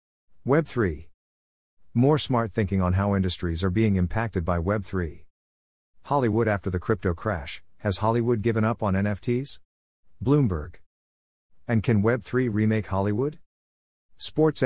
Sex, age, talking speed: male, 50-69, 125 wpm